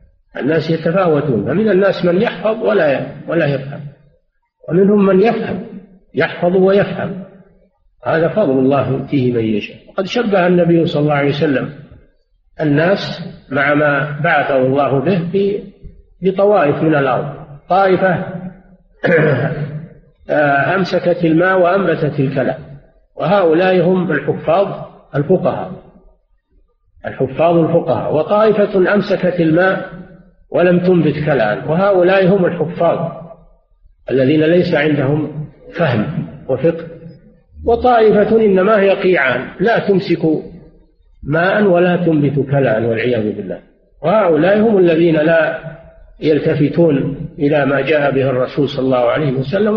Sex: male